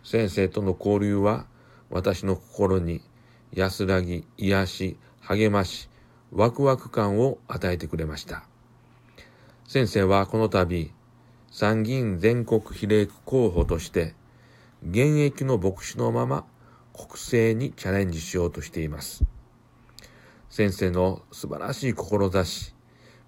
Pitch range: 90-125 Hz